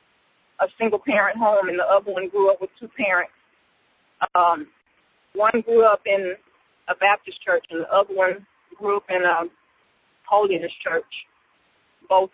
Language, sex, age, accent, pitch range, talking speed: English, female, 40-59, American, 195-245 Hz, 155 wpm